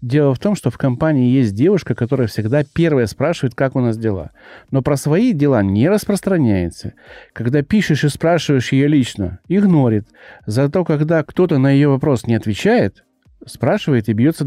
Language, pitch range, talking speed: Russian, 115-155 Hz, 165 wpm